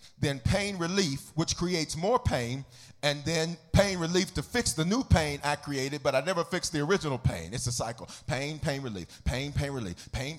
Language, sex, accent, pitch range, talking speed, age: English, male, American, 165-270 Hz, 200 wpm, 40-59